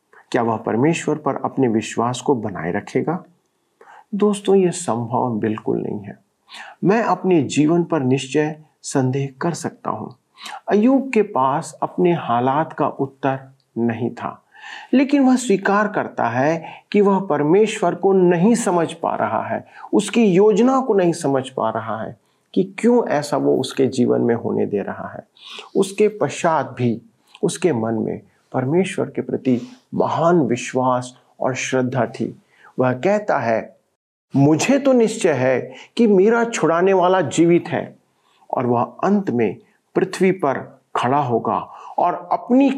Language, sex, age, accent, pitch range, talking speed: Hindi, male, 40-59, native, 130-200 Hz, 145 wpm